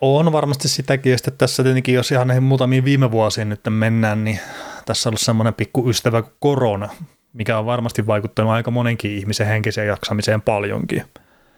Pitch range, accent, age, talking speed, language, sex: 110-125 Hz, native, 30-49, 170 wpm, Finnish, male